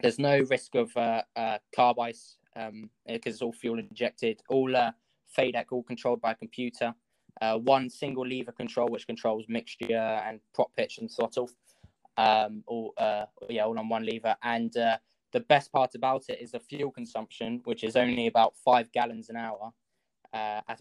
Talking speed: 185 wpm